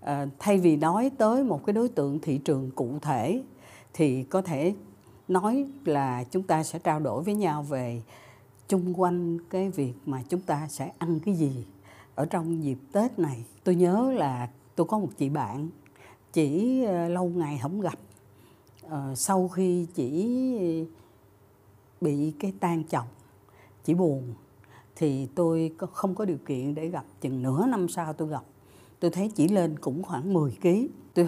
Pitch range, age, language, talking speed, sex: 140-195 Hz, 60-79, Vietnamese, 165 wpm, female